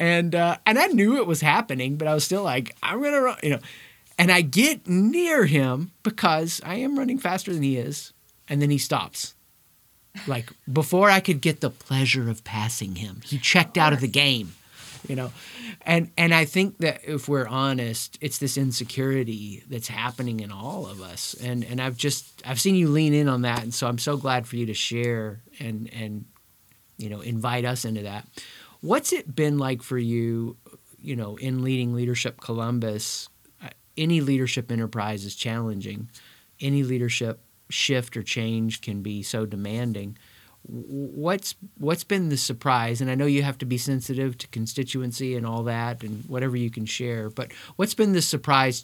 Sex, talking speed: male, 185 wpm